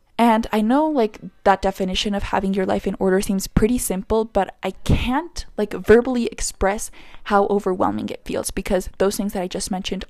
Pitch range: 190-225 Hz